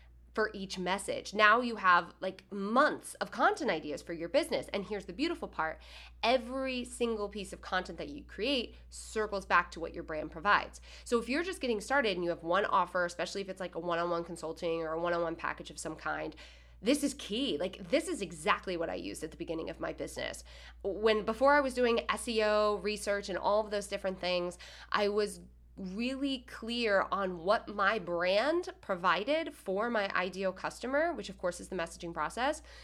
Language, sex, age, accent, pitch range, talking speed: English, female, 20-39, American, 175-235 Hz, 195 wpm